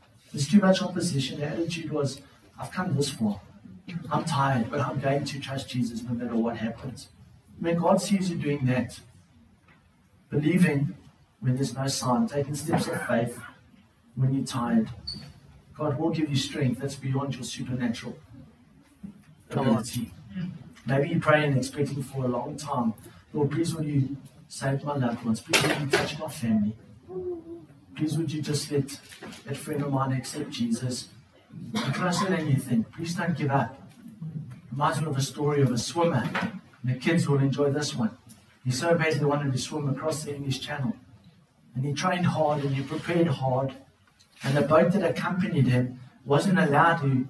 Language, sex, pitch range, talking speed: English, male, 125-155 Hz, 170 wpm